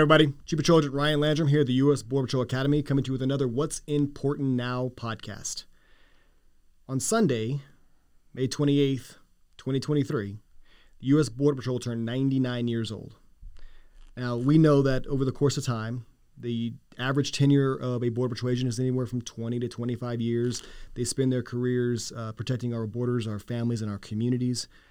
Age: 30-49